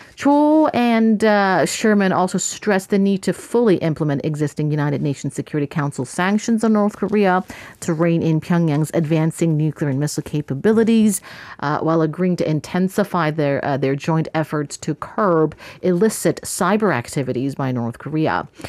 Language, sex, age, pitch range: English, female, 40-59, 150-200 Hz